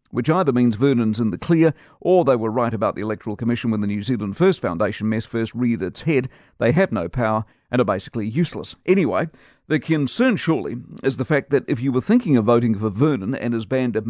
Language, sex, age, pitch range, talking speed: English, male, 50-69, 120-150 Hz, 230 wpm